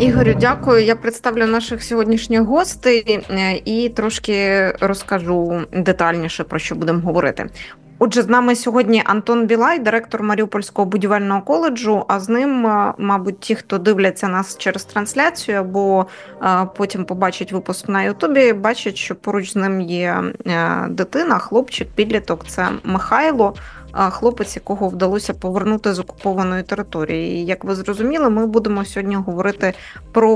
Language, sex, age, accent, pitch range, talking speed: Ukrainian, female, 20-39, native, 195-230 Hz, 135 wpm